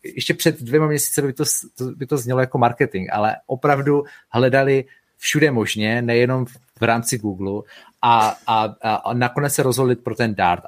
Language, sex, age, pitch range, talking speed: Czech, male, 30-49, 110-125 Hz, 165 wpm